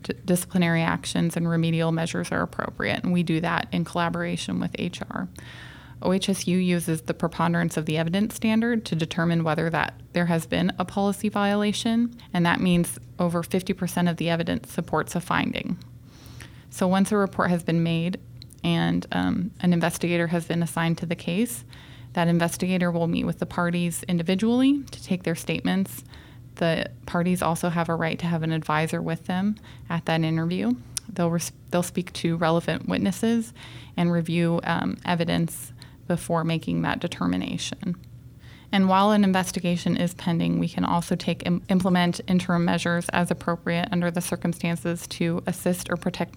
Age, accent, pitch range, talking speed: 20-39, American, 165-185 Hz, 165 wpm